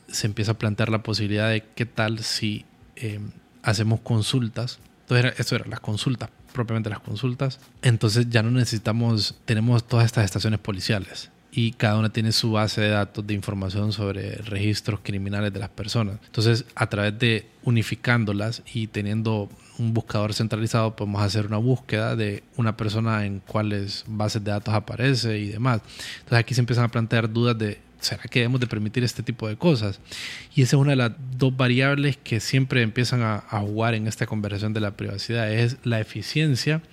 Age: 20-39